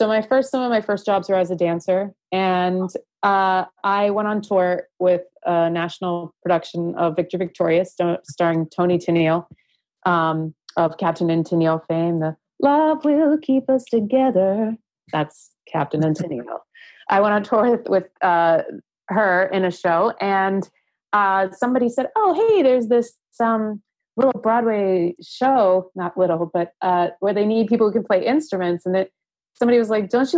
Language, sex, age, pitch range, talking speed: English, female, 30-49, 180-230 Hz, 170 wpm